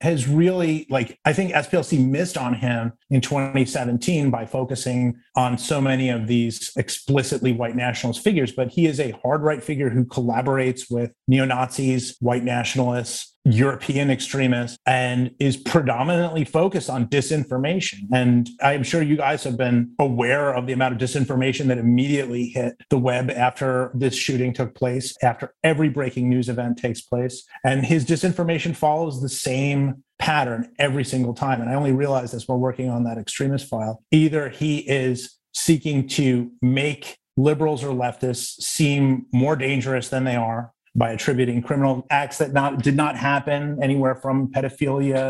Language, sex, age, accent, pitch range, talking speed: English, male, 30-49, American, 125-140 Hz, 160 wpm